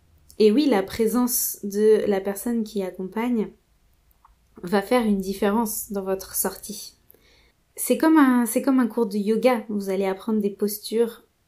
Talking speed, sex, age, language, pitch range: 155 wpm, female, 20-39, French, 195-235 Hz